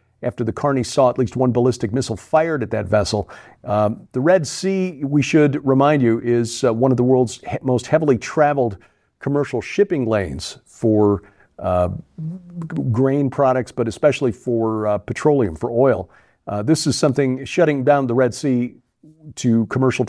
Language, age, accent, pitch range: English, 50-69, American, 115-150 Hz